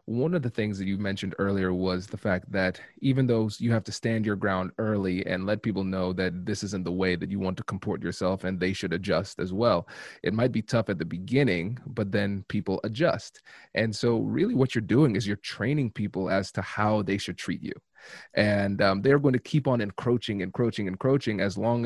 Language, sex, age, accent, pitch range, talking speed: English, male, 30-49, American, 95-115 Hz, 225 wpm